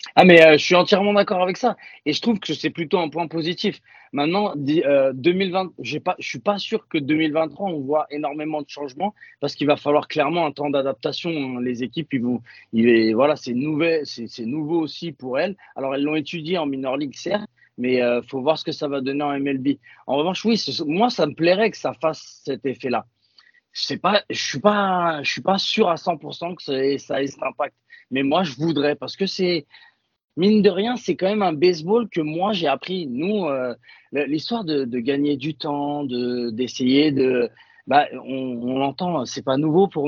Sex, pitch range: male, 125-170 Hz